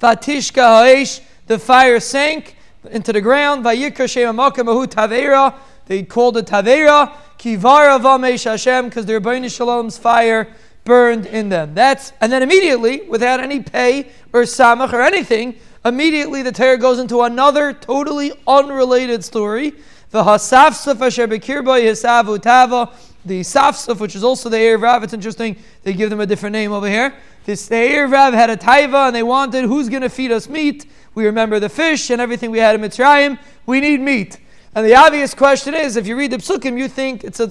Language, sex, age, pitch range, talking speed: English, male, 20-39, 225-270 Hz, 170 wpm